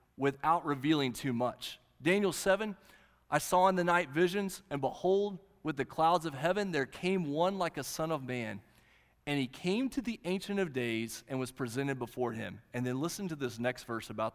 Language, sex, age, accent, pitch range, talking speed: English, male, 30-49, American, 110-160 Hz, 200 wpm